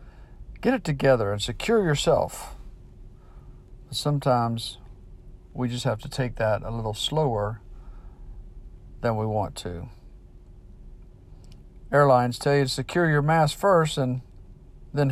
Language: English